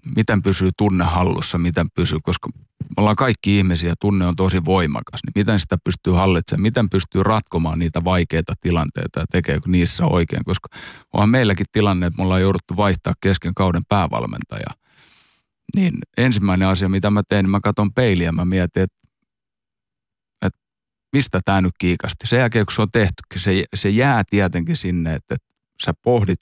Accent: native